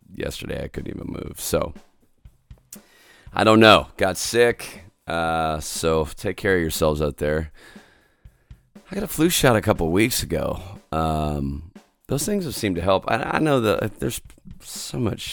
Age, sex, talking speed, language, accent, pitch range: 30-49, male, 165 wpm, English, American, 75-95 Hz